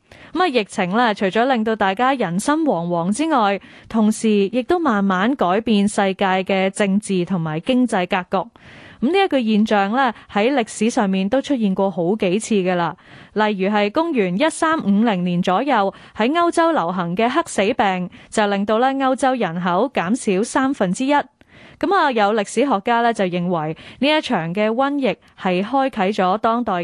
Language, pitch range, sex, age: Chinese, 190-255 Hz, female, 20-39